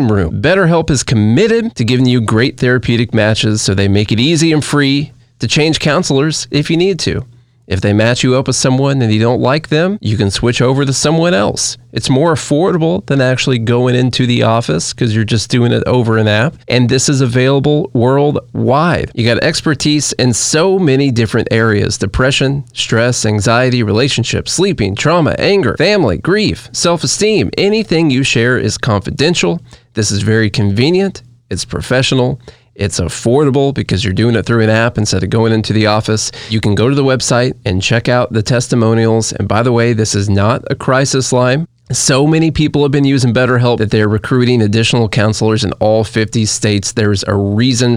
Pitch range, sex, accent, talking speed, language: 110-140 Hz, male, American, 185 wpm, English